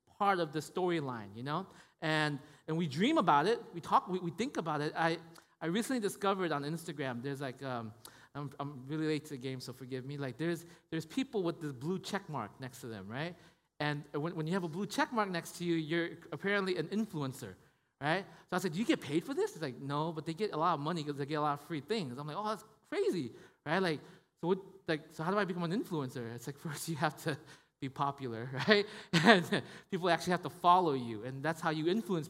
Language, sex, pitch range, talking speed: English, male, 150-195 Hz, 245 wpm